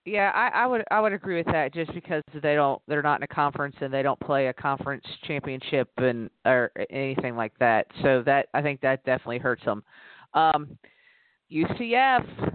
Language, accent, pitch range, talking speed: English, American, 145-190 Hz, 190 wpm